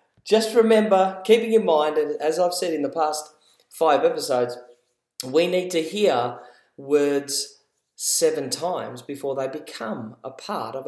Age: 40-59